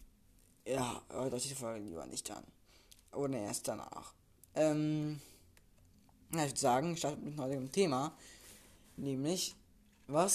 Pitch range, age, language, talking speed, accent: 125-150 Hz, 20-39, German, 135 wpm, German